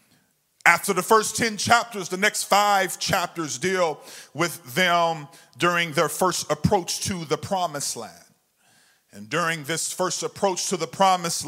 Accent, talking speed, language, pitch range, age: American, 145 wpm, English, 140-185 Hz, 40-59